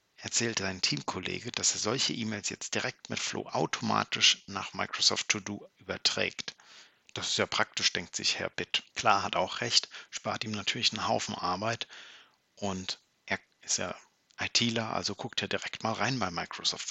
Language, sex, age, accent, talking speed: German, male, 50-69, German, 170 wpm